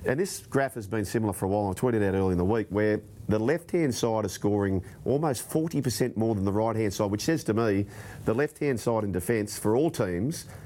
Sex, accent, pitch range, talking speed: male, Australian, 105-130 Hz, 230 wpm